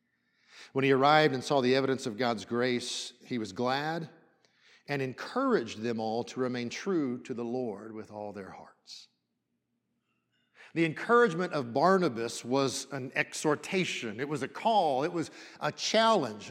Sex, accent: male, American